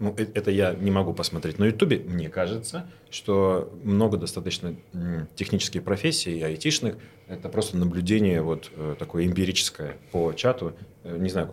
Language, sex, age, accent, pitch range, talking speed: Russian, male, 30-49, native, 85-105 Hz, 135 wpm